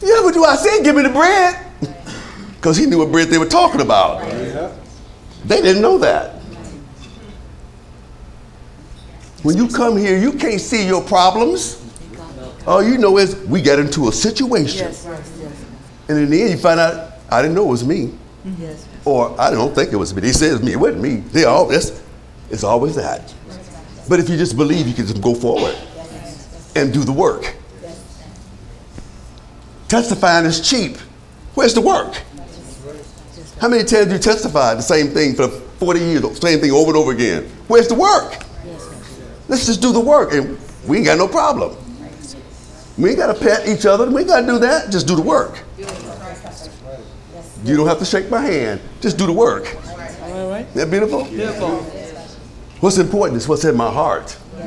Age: 60-79